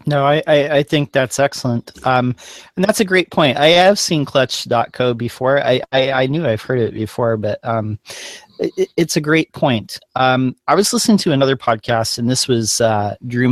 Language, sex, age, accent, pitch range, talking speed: English, male, 40-59, American, 115-155 Hz, 200 wpm